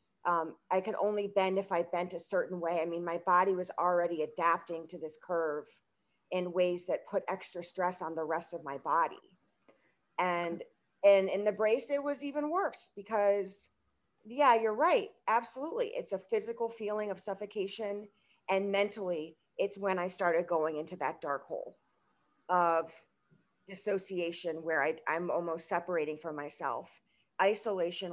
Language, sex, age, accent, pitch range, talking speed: English, female, 40-59, American, 175-210 Hz, 155 wpm